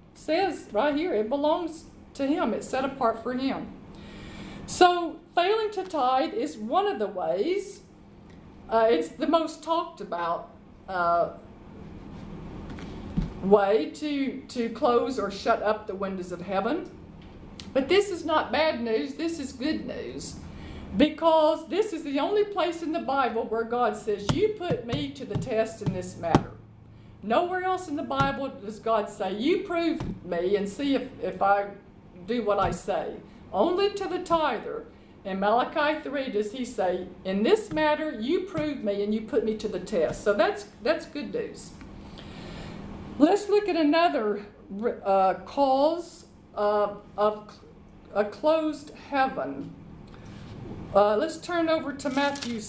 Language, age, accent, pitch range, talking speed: English, 50-69, American, 210-320 Hz, 155 wpm